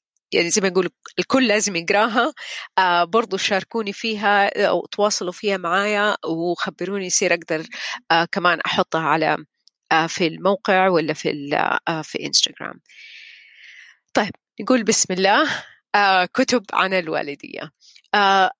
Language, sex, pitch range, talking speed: Arabic, female, 180-215 Hz, 125 wpm